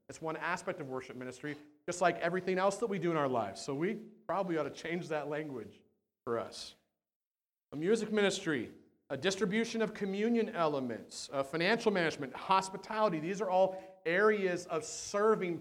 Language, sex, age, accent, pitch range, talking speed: English, male, 40-59, American, 145-205 Hz, 165 wpm